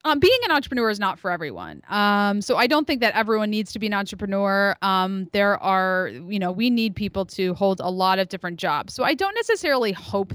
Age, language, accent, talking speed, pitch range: 20-39, English, American, 230 wpm, 195-240 Hz